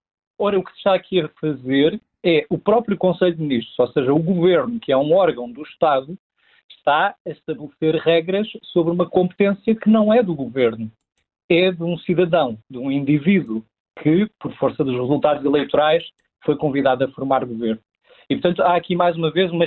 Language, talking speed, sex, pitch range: Portuguese, 190 wpm, male, 150-180 Hz